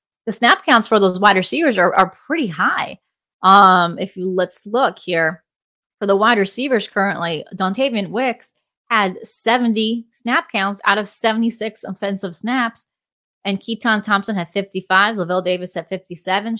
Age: 20-39